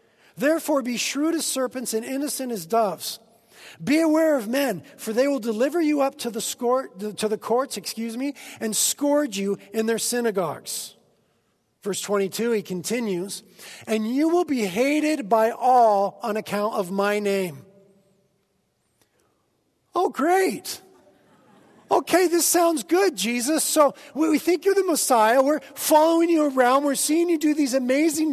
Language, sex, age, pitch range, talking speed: English, male, 40-59, 215-305 Hz, 155 wpm